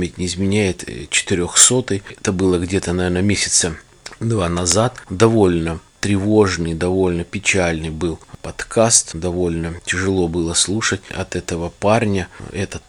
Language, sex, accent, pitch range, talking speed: Russian, male, native, 90-100 Hz, 110 wpm